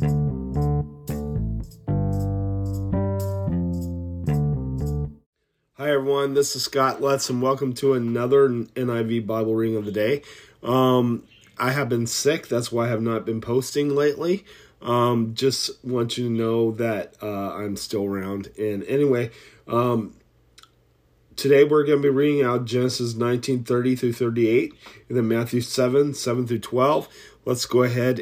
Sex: male